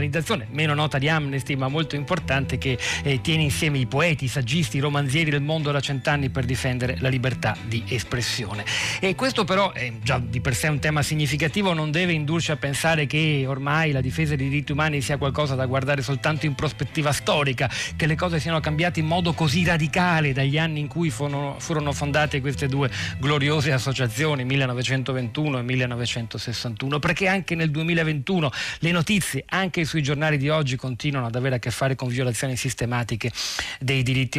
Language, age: Italian, 40-59